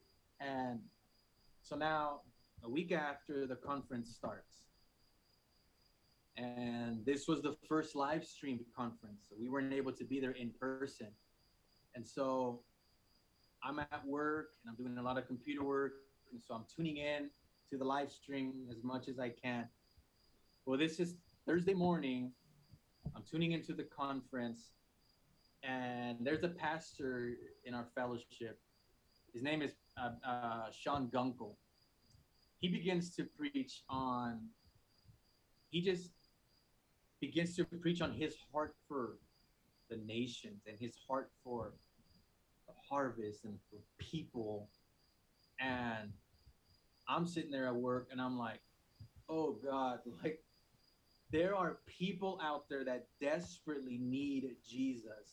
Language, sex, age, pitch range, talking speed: English, male, 30-49, 120-150 Hz, 135 wpm